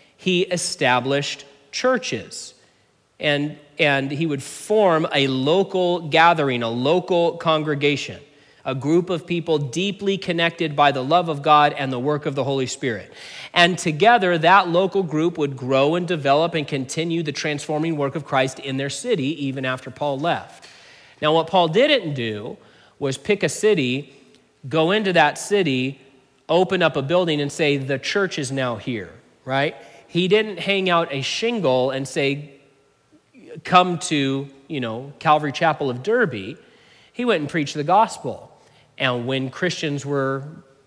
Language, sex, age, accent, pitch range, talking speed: English, male, 40-59, American, 135-180 Hz, 155 wpm